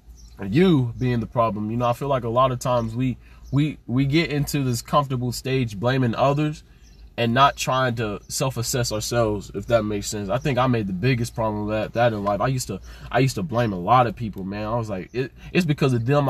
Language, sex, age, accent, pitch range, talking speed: English, male, 20-39, American, 115-140 Hz, 235 wpm